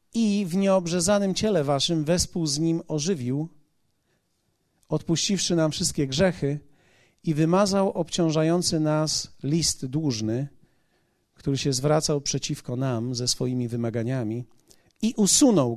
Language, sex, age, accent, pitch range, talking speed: Polish, male, 40-59, native, 135-175 Hz, 110 wpm